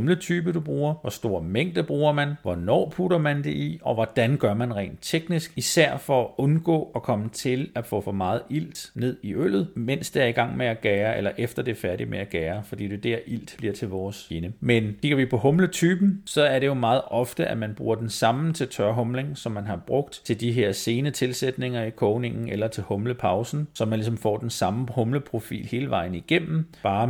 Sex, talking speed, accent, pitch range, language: male, 220 wpm, native, 105-135 Hz, Danish